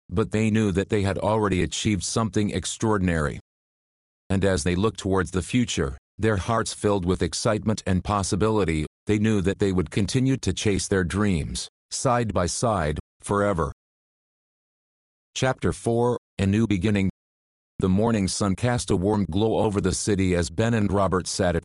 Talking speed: 165 wpm